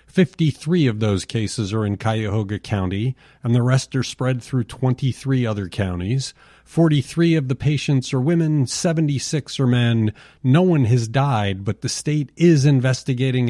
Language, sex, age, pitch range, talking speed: English, male, 40-59, 105-140 Hz, 155 wpm